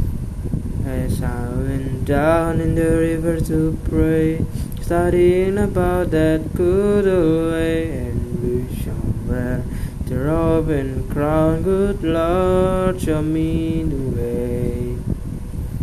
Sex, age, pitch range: male, 20-39, 120-180 Hz